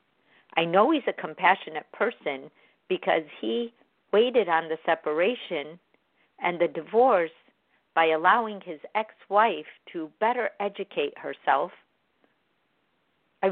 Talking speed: 105 wpm